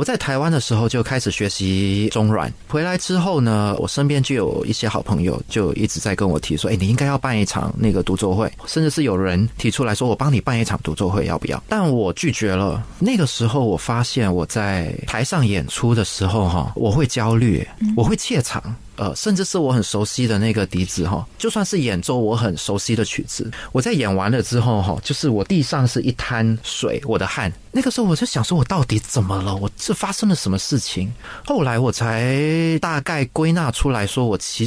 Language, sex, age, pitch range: Chinese, male, 30-49, 100-145 Hz